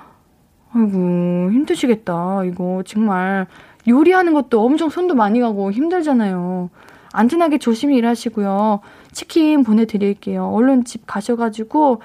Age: 20-39